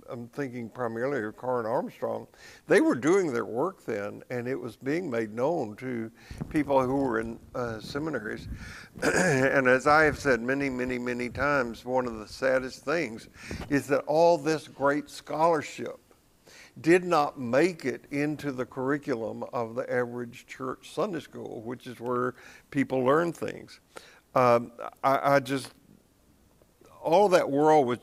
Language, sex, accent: English, male, American